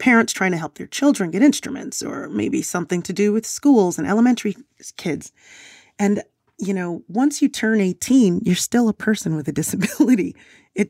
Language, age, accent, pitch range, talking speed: English, 30-49, American, 165-215 Hz, 180 wpm